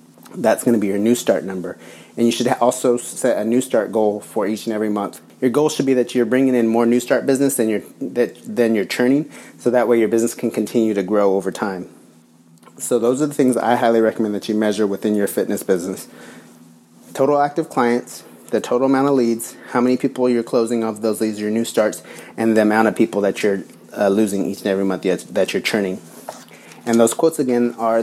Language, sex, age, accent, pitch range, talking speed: English, male, 30-49, American, 110-130 Hz, 225 wpm